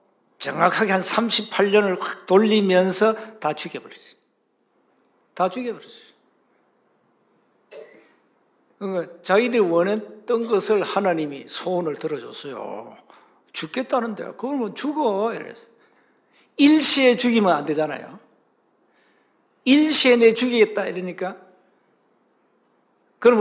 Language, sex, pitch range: Korean, male, 185-255 Hz